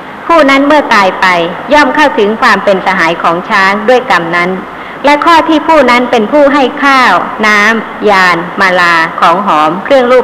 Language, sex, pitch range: Thai, male, 195-260 Hz